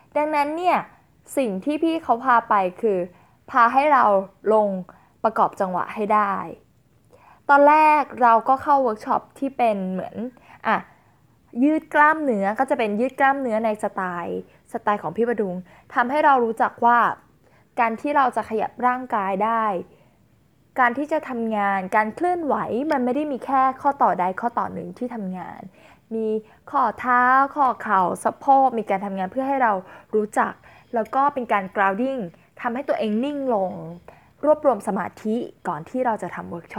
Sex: female